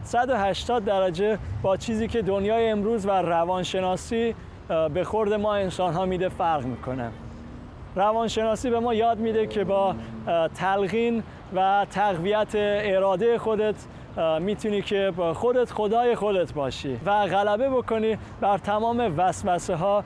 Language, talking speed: Persian, 120 wpm